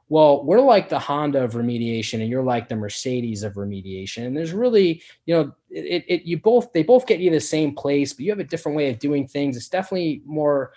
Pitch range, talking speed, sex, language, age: 115-145 Hz, 240 wpm, male, English, 20-39